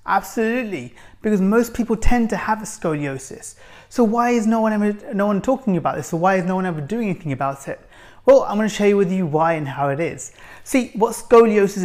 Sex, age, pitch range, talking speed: male, 30-49, 150-210 Hz, 235 wpm